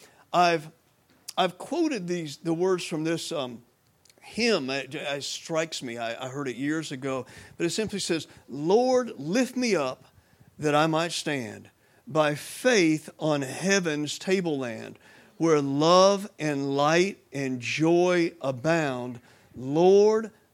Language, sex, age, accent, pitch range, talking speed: English, male, 50-69, American, 140-200 Hz, 130 wpm